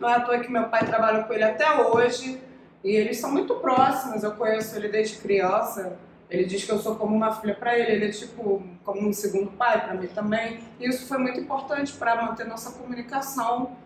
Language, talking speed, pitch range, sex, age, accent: Portuguese, 220 wpm, 210-285 Hz, female, 20-39, Brazilian